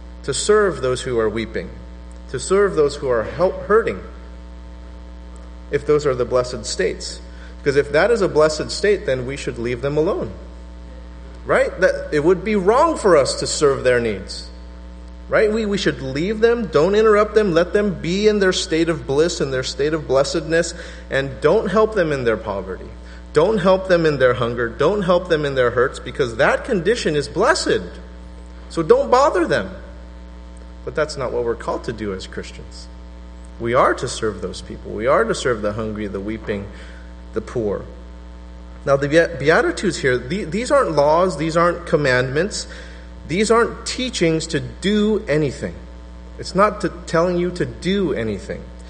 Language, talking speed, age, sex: English, 175 wpm, 30-49, male